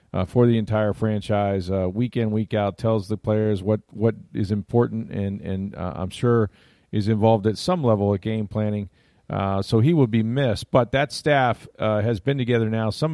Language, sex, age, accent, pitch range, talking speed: English, male, 40-59, American, 105-125 Hz, 205 wpm